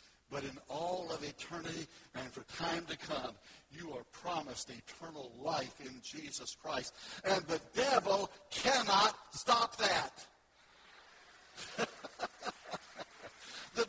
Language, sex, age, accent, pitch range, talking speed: English, male, 60-79, American, 185-285 Hz, 110 wpm